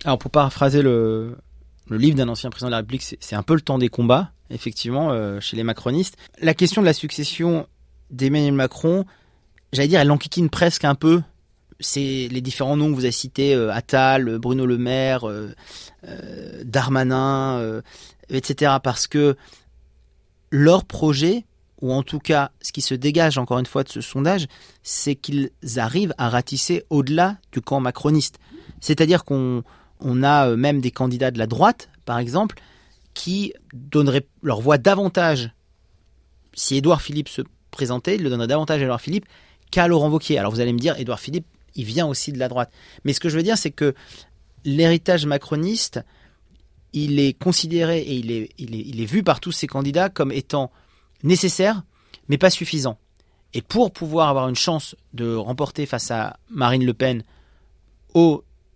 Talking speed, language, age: 175 wpm, French, 30-49